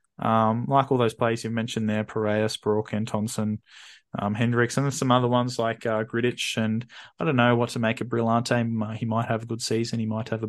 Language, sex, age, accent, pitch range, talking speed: English, male, 20-39, Australian, 110-125 Hz, 230 wpm